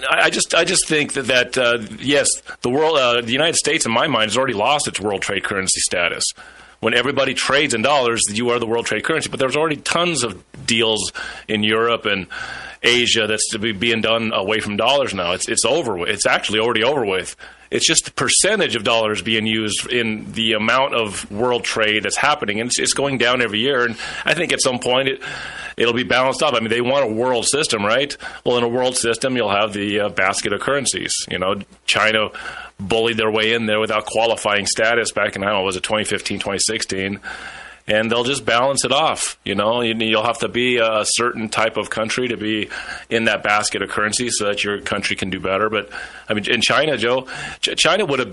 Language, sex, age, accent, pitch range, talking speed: English, male, 30-49, American, 110-125 Hz, 220 wpm